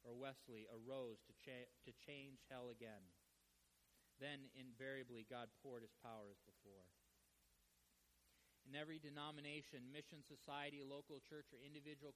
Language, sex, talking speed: English, male, 125 wpm